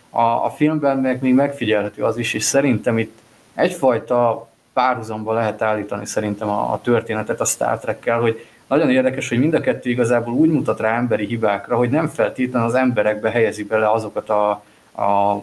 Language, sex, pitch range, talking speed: Hungarian, male, 105-125 Hz, 165 wpm